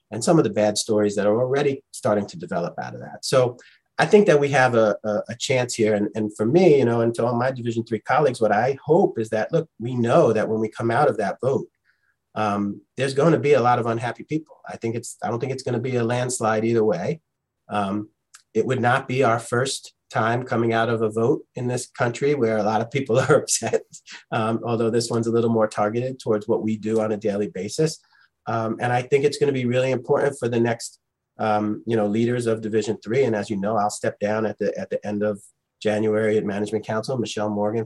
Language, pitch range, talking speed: English, 105-125 Hz, 245 wpm